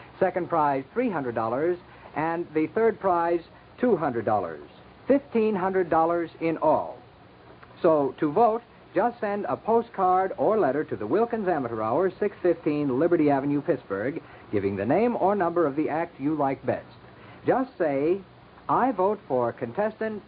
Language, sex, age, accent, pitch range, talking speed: English, male, 60-79, American, 135-190 Hz, 135 wpm